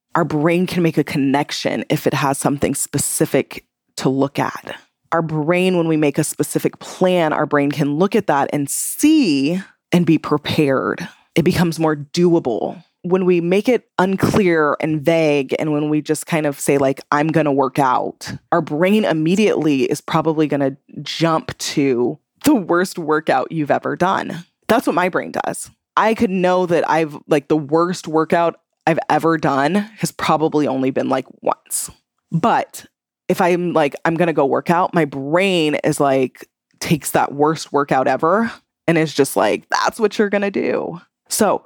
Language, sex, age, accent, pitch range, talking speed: English, female, 20-39, American, 150-180 Hz, 175 wpm